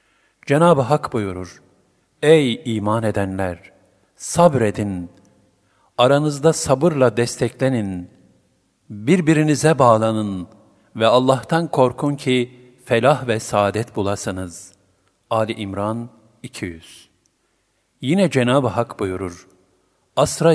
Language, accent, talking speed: Turkish, native, 80 wpm